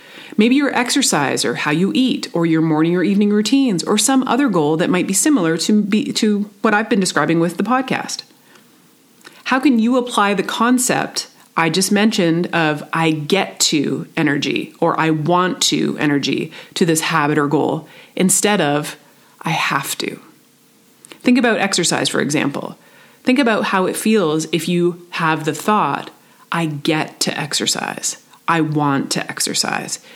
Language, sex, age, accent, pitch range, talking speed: English, female, 30-49, American, 160-235 Hz, 165 wpm